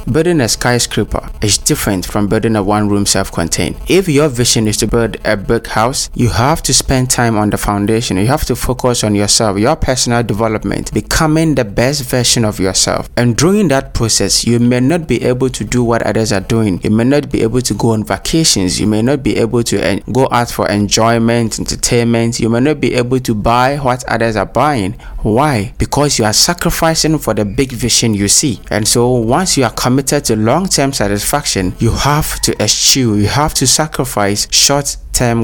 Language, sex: English, male